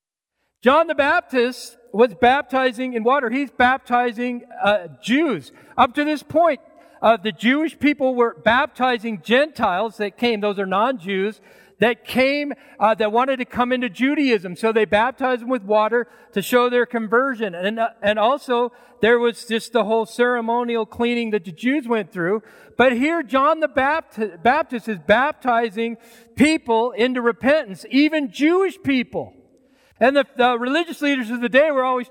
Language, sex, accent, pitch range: English, male, American, 220-275 Hz